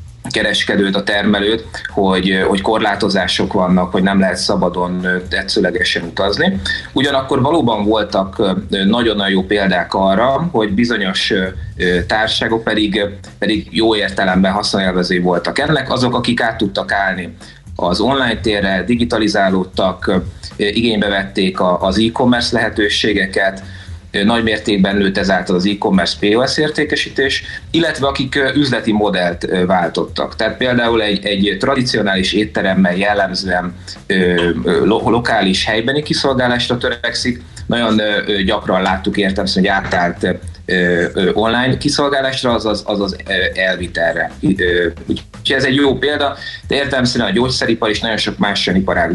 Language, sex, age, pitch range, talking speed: Hungarian, male, 30-49, 95-120 Hz, 120 wpm